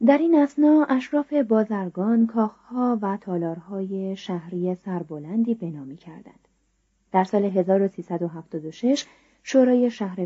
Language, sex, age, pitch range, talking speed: Persian, female, 30-49, 180-245 Hz, 100 wpm